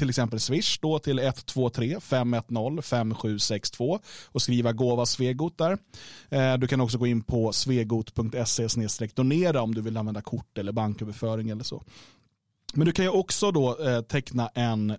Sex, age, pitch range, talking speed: male, 30-49, 115-145 Hz, 145 wpm